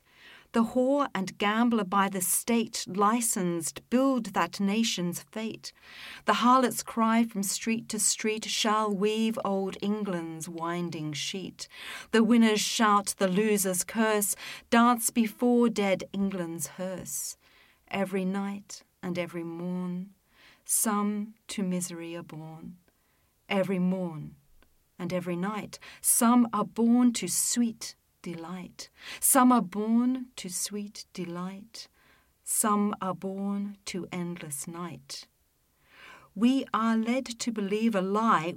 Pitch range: 175-225 Hz